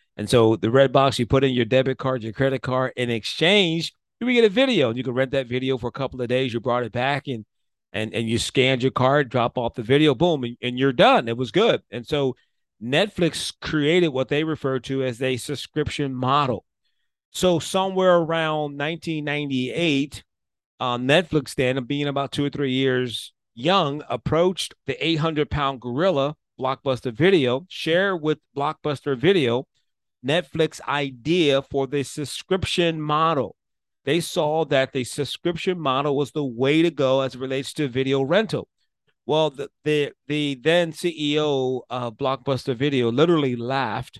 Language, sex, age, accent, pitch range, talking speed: English, male, 40-59, American, 125-150 Hz, 170 wpm